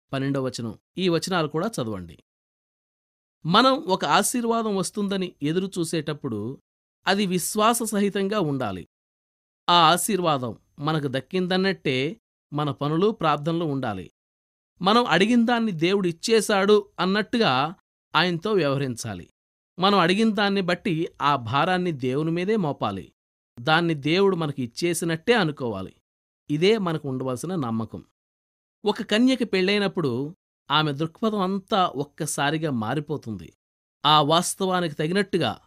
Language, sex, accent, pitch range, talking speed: Telugu, male, native, 135-200 Hz, 95 wpm